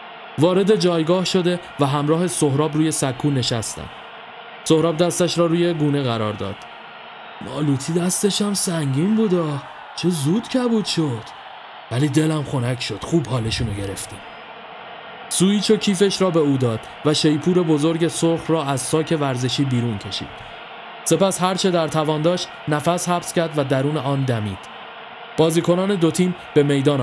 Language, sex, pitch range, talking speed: Persian, male, 140-175 Hz, 145 wpm